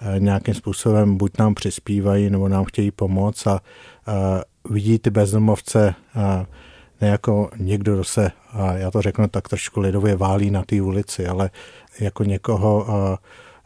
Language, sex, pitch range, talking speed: Czech, male, 95-105 Hz, 135 wpm